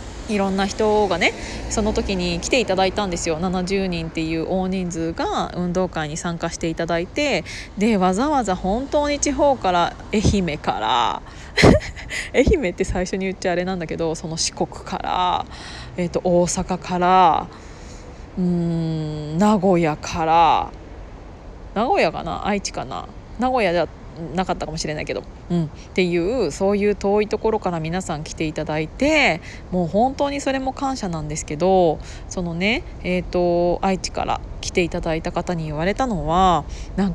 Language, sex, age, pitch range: Japanese, female, 20-39, 170-220 Hz